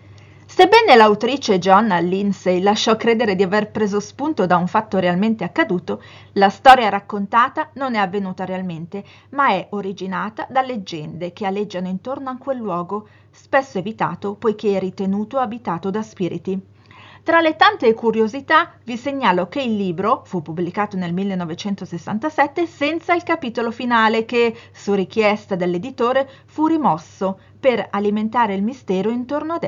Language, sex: Italian, female